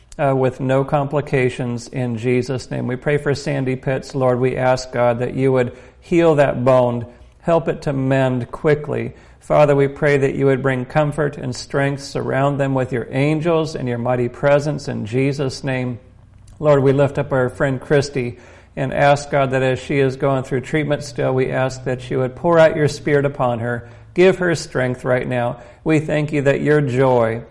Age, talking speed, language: 50-69, 195 wpm, English